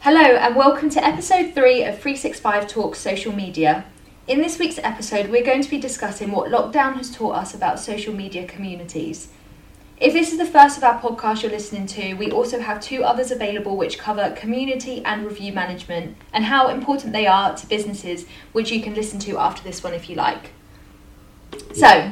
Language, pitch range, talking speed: English, 195-250 Hz, 195 wpm